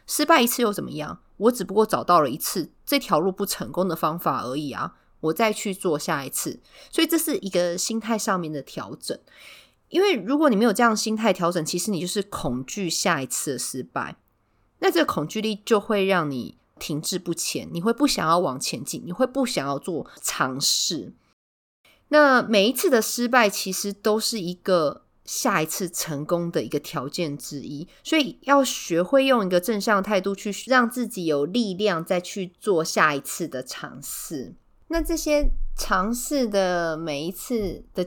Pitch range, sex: 170-225 Hz, female